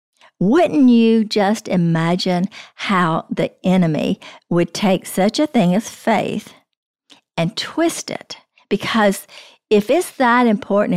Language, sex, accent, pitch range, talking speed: English, female, American, 165-215 Hz, 120 wpm